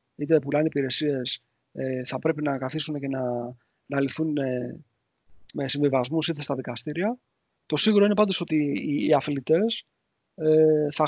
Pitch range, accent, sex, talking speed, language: 145-180 Hz, Spanish, male, 155 wpm, Greek